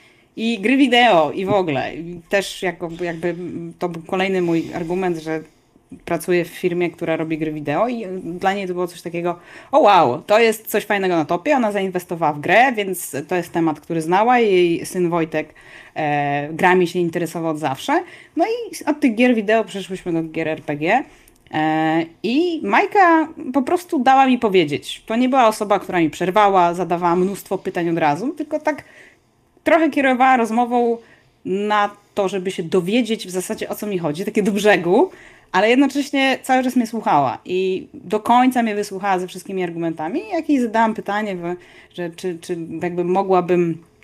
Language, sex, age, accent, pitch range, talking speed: Polish, female, 30-49, native, 165-225 Hz, 175 wpm